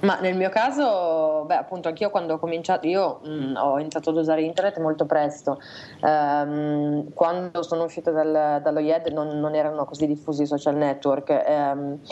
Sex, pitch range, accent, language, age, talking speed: female, 140-155 Hz, native, Italian, 20-39, 175 wpm